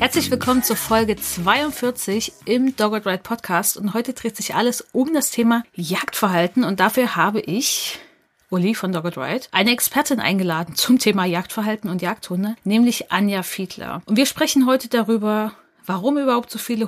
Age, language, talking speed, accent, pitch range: 30-49, German, 165 wpm, German, 190-235 Hz